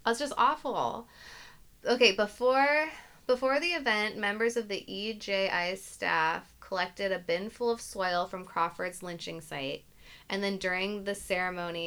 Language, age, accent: English, 20-39, American